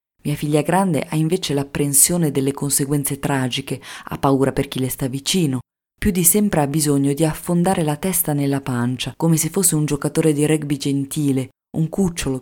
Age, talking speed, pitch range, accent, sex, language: 20-39, 180 wpm, 130-160 Hz, native, female, Italian